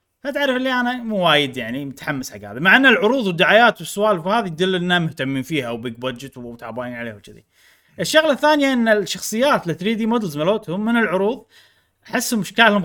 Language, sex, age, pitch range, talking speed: Arabic, male, 30-49, 125-205 Hz, 170 wpm